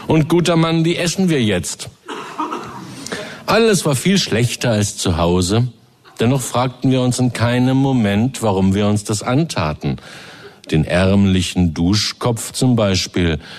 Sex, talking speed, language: male, 135 wpm, German